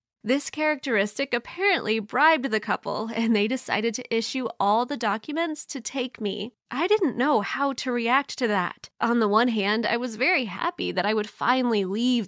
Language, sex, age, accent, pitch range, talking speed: English, female, 20-39, American, 210-265 Hz, 185 wpm